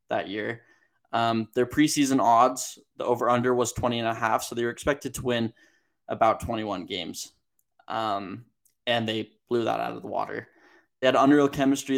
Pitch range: 110-125 Hz